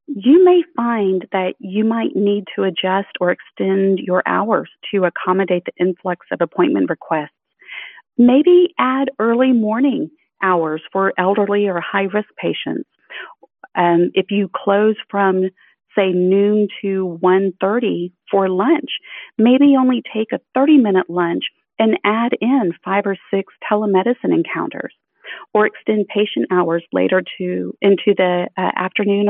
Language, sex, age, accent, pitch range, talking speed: English, female, 40-59, American, 185-240 Hz, 135 wpm